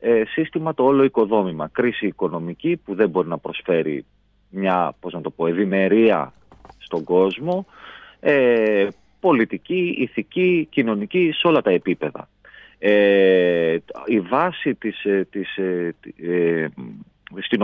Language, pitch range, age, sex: Greek, 90-120 Hz, 40-59, male